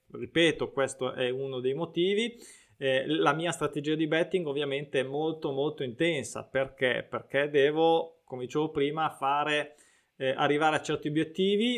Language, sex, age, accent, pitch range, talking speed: Italian, male, 20-39, native, 135-160 Hz, 150 wpm